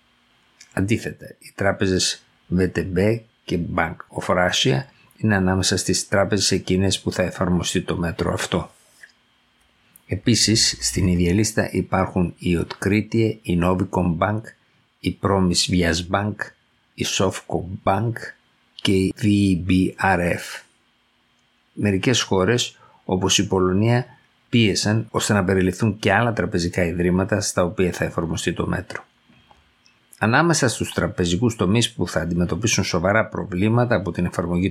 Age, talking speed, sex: 50-69, 120 wpm, male